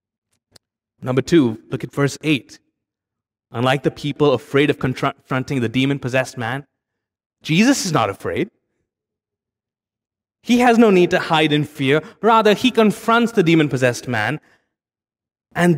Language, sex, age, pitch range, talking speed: English, male, 20-39, 115-175 Hz, 130 wpm